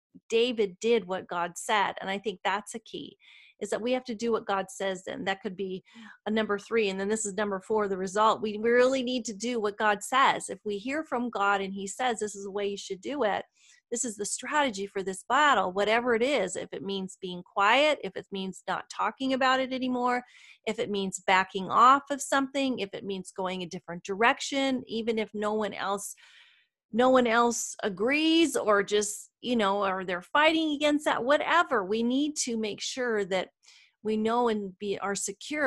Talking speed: 215 wpm